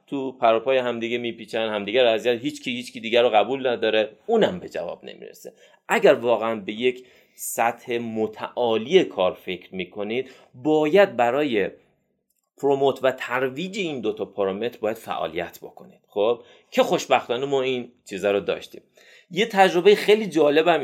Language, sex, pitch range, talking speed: Persian, male, 115-175 Hz, 145 wpm